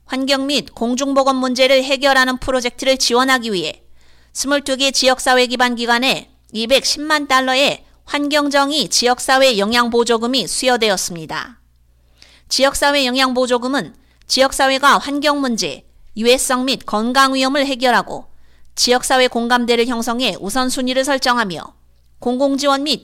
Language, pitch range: Korean, 235-275 Hz